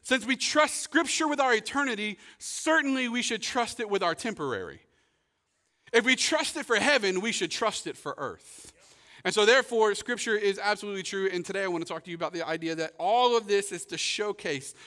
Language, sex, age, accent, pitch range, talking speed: English, male, 40-59, American, 155-215 Hz, 210 wpm